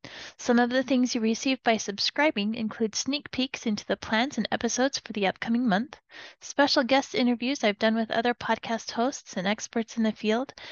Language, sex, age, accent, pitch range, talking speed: English, female, 30-49, American, 215-280 Hz, 190 wpm